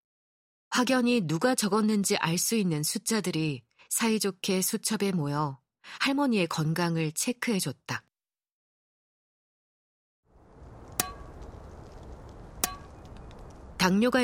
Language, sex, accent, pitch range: Korean, female, native, 155-225 Hz